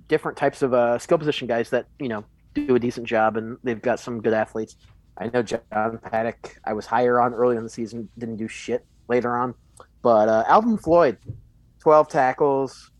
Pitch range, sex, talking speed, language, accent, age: 115-145 Hz, male, 200 wpm, English, American, 30-49